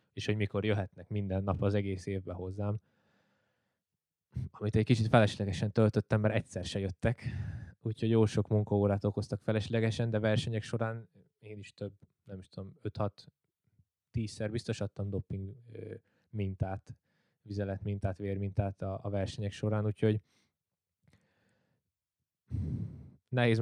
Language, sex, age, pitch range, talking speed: Hungarian, male, 20-39, 100-115 Hz, 120 wpm